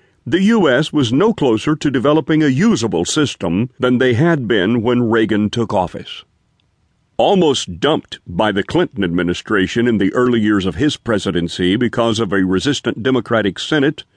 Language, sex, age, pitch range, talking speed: English, male, 50-69, 110-145 Hz, 155 wpm